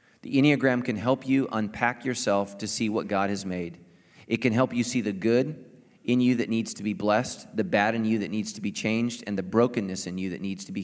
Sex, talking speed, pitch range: male, 250 wpm, 100-120 Hz